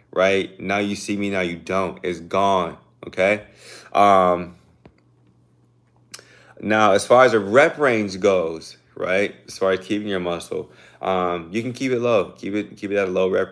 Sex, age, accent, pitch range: male, 20-39, American, 95-120 Hz